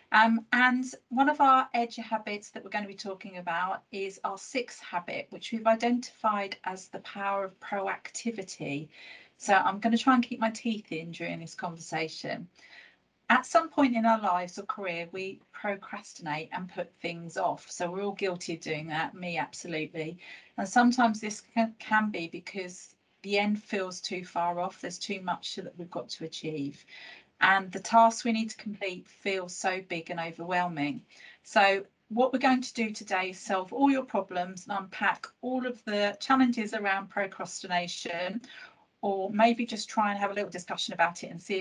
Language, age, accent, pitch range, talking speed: English, 40-59, British, 180-225 Hz, 185 wpm